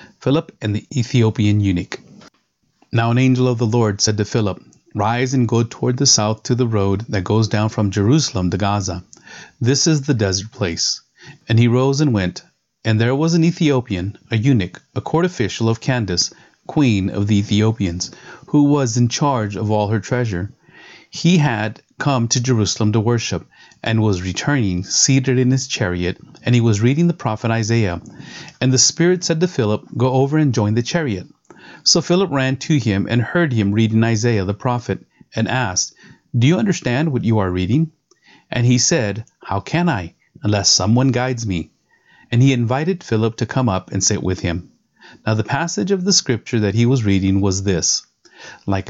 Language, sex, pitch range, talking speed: English, male, 100-135 Hz, 185 wpm